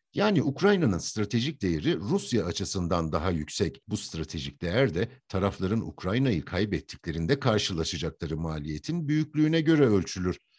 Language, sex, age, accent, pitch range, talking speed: Turkish, male, 60-79, native, 90-145 Hz, 115 wpm